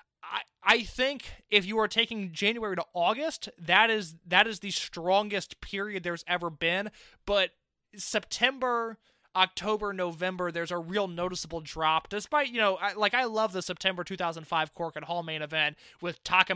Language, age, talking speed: English, 20-39, 165 wpm